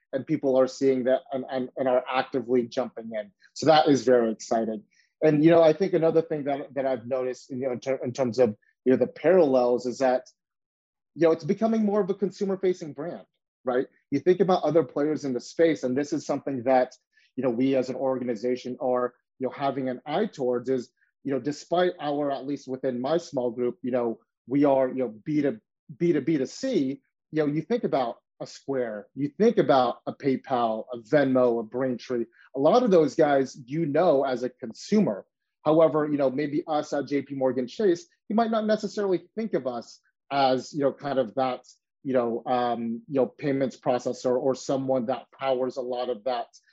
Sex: male